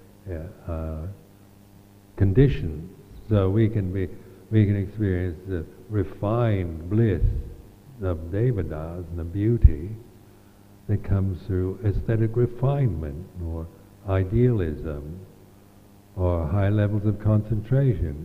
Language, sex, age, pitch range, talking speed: English, male, 60-79, 90-105 Hz, 100 wpm